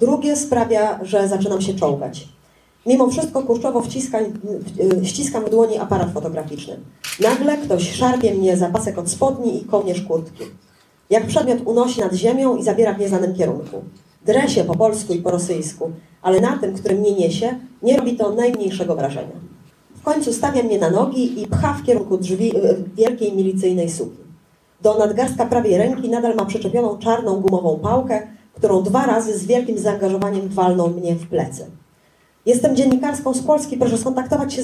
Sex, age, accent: female, 30-49, native